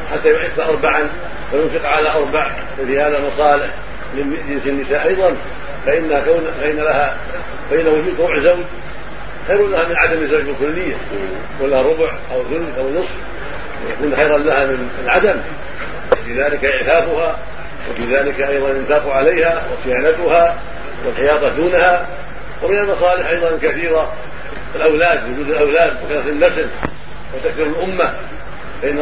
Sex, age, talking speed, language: male, 50-69, 115 wpm, Arabic